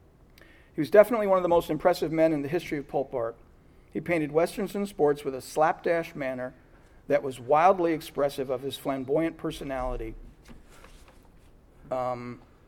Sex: male